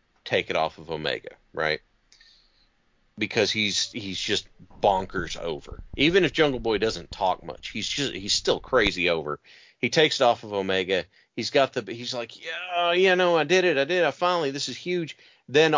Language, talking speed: English, 190 wpm